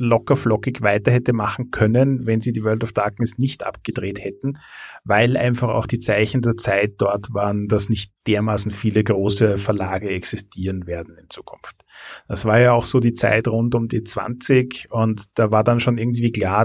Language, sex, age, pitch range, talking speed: German, male, 30-49, 105-125 Hz, 185 wpm